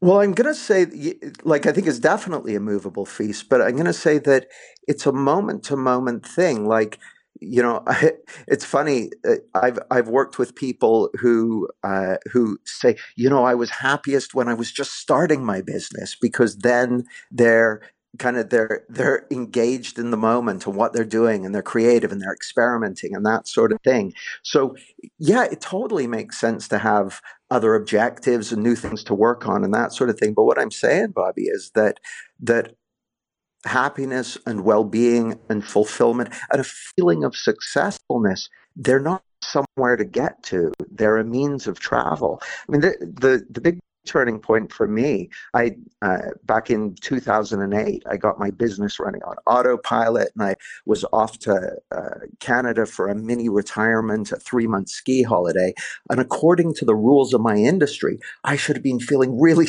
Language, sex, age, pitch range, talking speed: English, male, 50-69, 110-140 Hz, 180 wpm